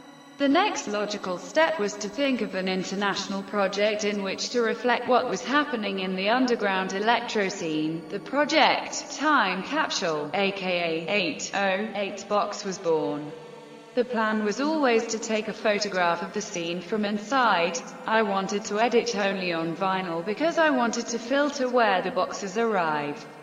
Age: 20-39